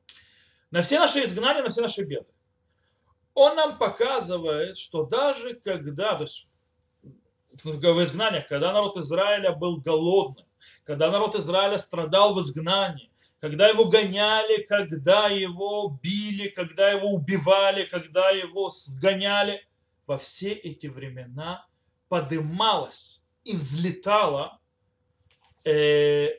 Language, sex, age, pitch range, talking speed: Russian, male, 20-39, 155-210 Hz, 110 wpm